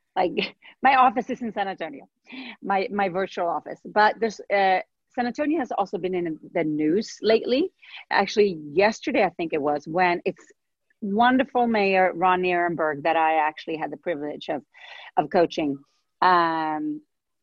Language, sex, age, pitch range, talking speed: English, female, 40-59, 170-235 Hz, 155 wpm